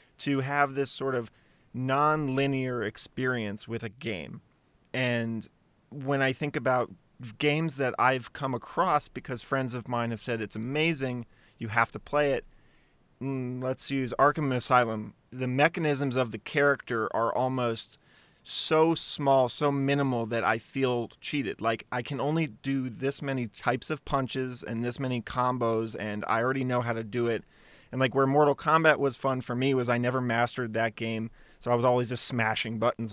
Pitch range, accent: 115-140 Hz, American